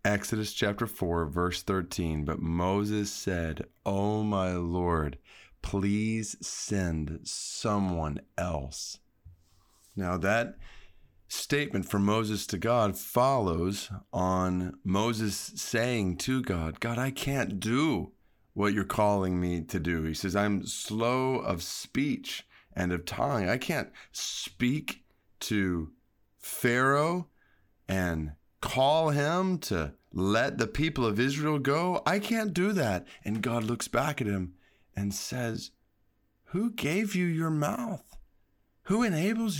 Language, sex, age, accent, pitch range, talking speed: English, male, 40-59, American, 95-145 Hz, 125 wpm